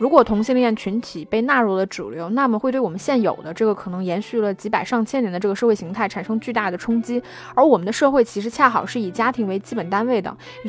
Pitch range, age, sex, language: 200-250 Hz, 20-39, female, Chinese